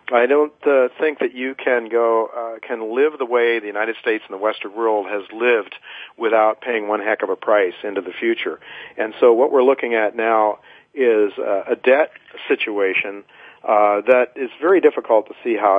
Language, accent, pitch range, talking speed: English, American, 105-155 Hz, 200 wpm